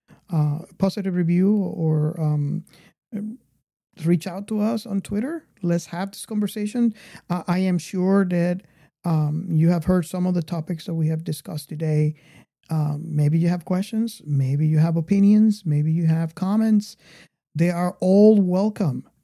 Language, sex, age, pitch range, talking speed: English, male, 50-69, 155-195 Hz, 160 wpm